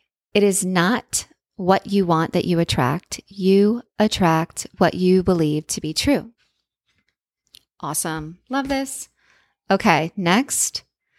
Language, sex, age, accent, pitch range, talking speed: English, female, 20-39, American, 160-200 Hz, 120 wpm